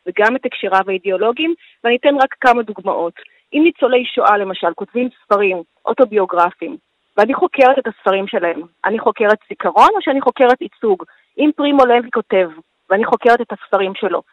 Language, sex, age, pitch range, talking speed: Hebrew, female, 30-49, 195-260 Hz, 155 wpm